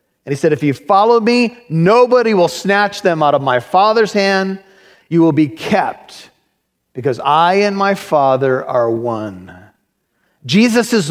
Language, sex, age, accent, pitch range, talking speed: English, male, 40-59, American, 160-225 Hz, 150 wpm